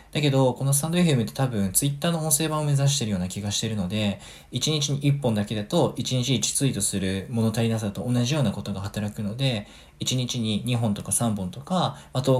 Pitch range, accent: 105-140 Hz, native